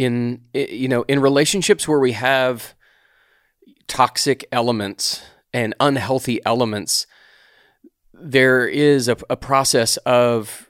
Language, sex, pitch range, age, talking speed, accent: English, male, 105-125 Hz, 30-49, 105 wpm, American